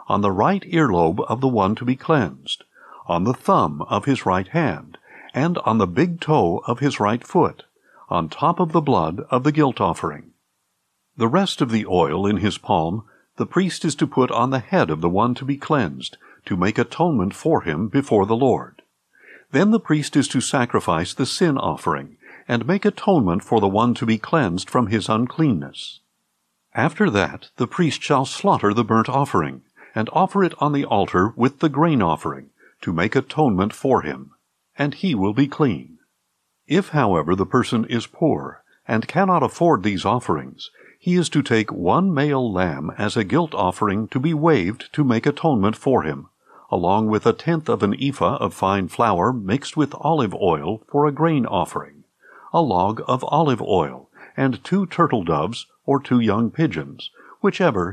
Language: English